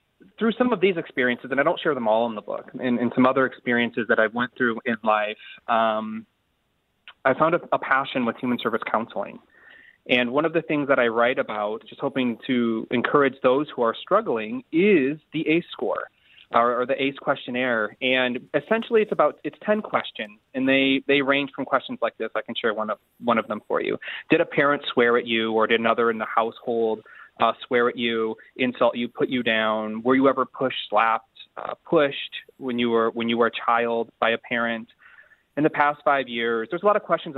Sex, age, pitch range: male, 30-49, 115-150 Hz